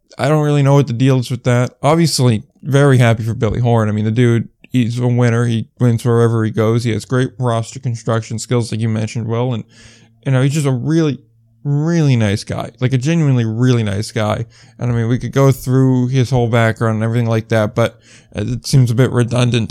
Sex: male